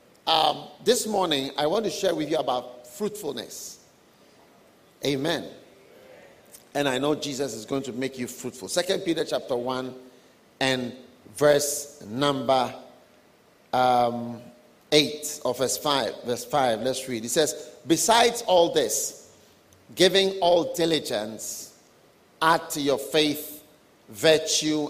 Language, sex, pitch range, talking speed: English, male, 135-200 Hz, 125 wpm